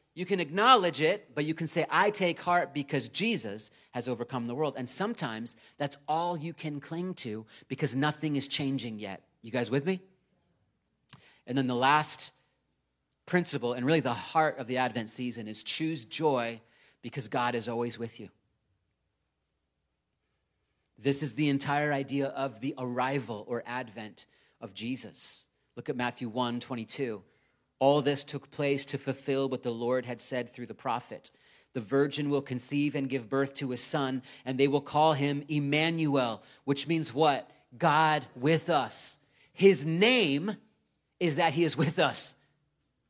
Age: 30-49